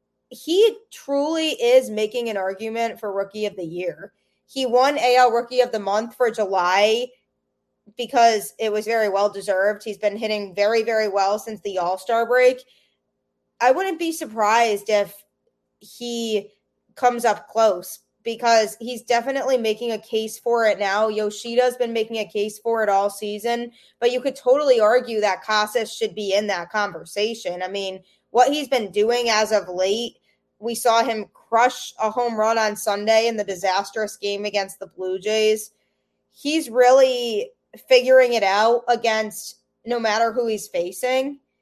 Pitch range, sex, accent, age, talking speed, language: 205-245 Hz, female, American, 20-39, 160 wpm, English